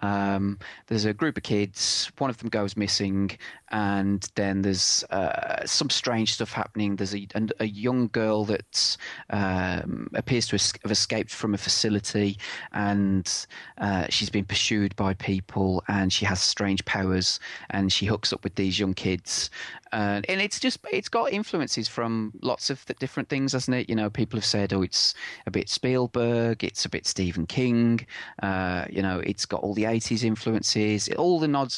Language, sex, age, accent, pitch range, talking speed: English, male, 30-49, British, 100-115 Hz, 180 wpm